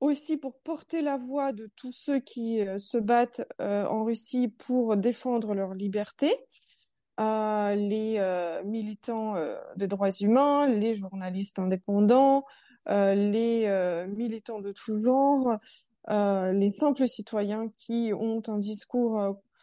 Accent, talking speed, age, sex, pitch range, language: French, 140 wpm, 20-39, female, 205-245 Hz, French